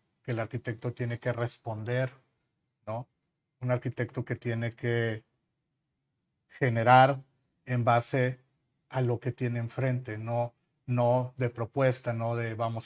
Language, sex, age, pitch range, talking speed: Spanish, male, 40-59, 115-135 Hz, 125 wpm